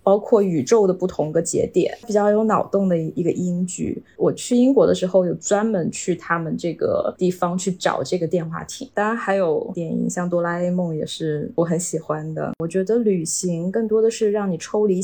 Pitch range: 170-195 Hz